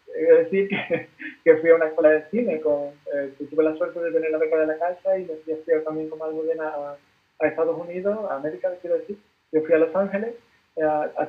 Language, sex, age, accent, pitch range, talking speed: Spanish, male, 20-39, Spanish, 155-200 Hz, 250 wpm